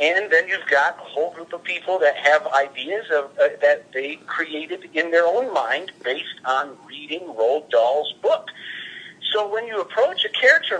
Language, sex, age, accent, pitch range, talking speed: English, male, 50-69, American, 135-215 Hz, 180 wpm